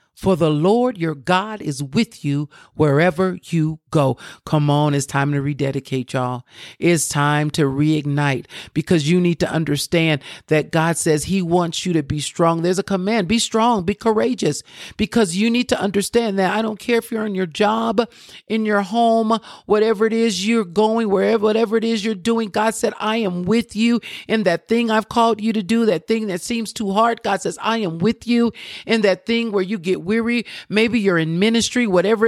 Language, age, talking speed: English, 50-69, 205 wpm